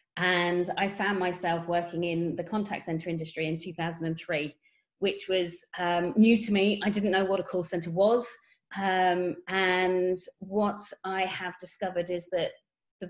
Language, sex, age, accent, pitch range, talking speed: English, female, 30-49, British, 175-200 Hz, 160 wpm